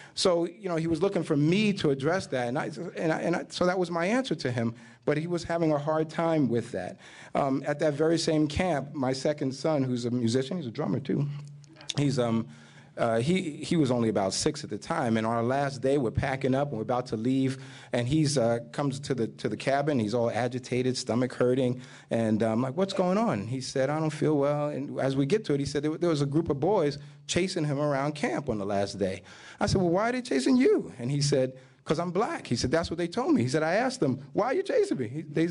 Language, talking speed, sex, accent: English, 265 wpm, male, American